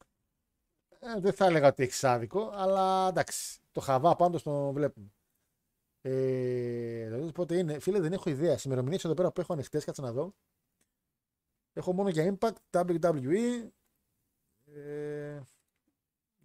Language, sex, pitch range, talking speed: Greek, male, 130-180 Hz, 130 wpm